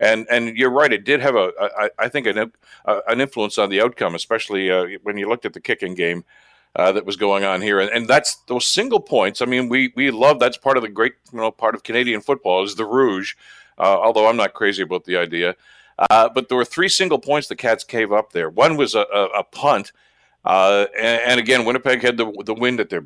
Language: English